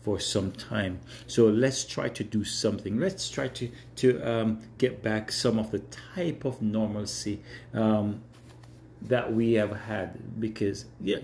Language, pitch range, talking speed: English, 110-135 Hz, 155 wpm